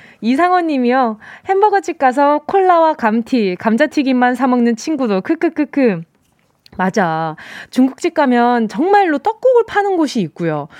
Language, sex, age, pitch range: Korean, female, 20-39, 210-320 Hz